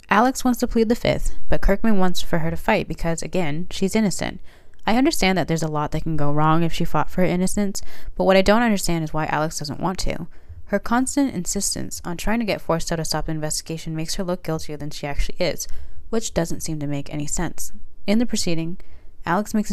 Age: 20-39